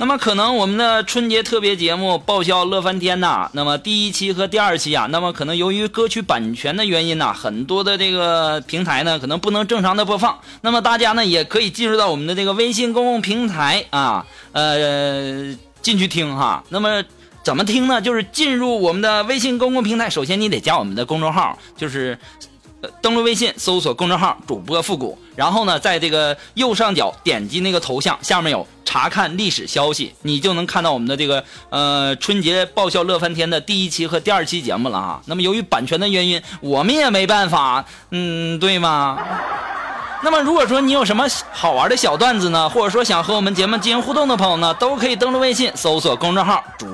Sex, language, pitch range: male, Chinese, 170-235 Hz